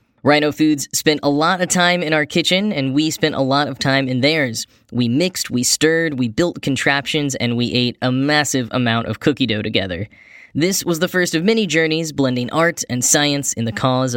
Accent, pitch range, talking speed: American, 125-165 Hz, 210 wpm